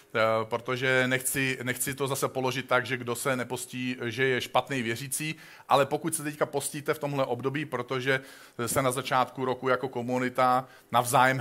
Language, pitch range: Czech, 125-140 Hz